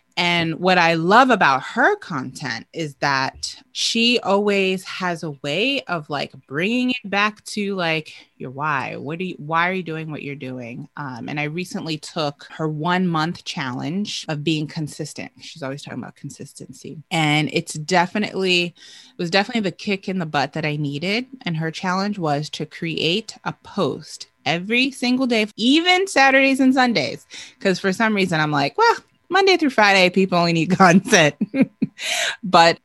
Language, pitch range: English, 155-205 Hz